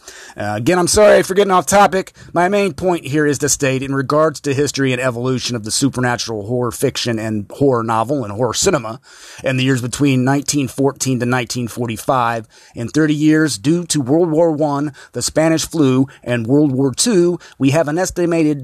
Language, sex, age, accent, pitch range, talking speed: English, male, 30-49, American, 125-155 Hz, 185 wpm